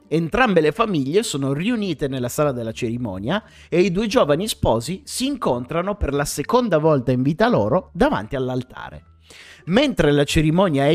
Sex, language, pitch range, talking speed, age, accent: male, Italian, 130-200 Hz, 160 wpm, 30-49, native